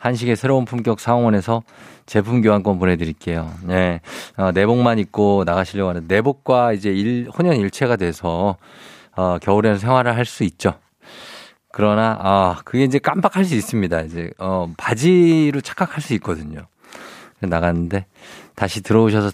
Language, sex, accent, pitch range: Korean, male, native, 95-120 Hz